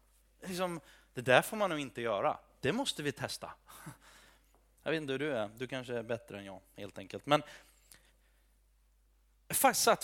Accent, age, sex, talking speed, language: native, 30-49, male, 175 wpm, Swedish